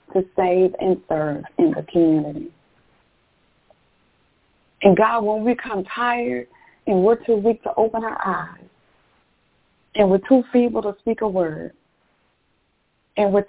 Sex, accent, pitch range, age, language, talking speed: female, American, 175-240 Hz, 30-49, English, 140 wpm